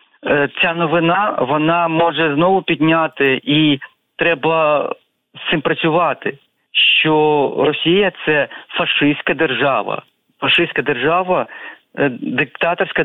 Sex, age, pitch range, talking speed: male, 40-59, 145-165 Hz, 90 wpm